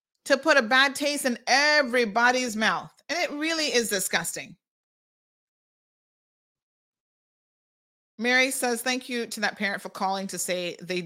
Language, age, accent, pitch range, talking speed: English, 30-49, American, 175-245 Hz, 135 wpm